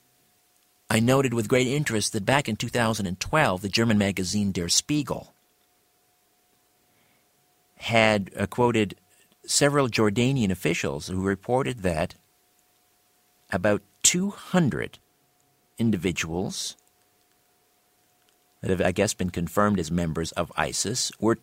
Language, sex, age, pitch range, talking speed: English, male, 50-69, 90-115 Hz, 105 wpm